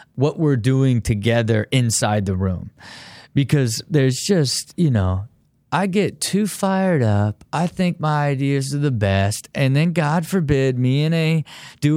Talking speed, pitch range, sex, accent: 160 wpm, 115-150 Hz, male, American